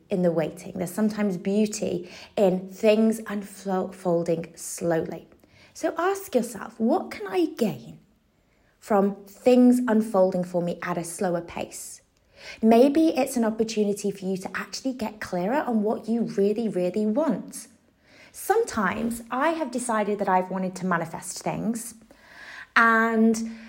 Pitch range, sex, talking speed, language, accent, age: 190-245 Hz, female, 135 wpm, English, British, 20-39